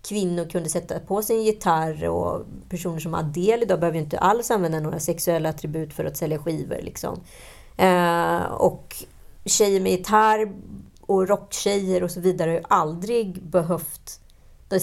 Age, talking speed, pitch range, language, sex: 30-49, 155 wpm, 155-190 Hz, Swedish, female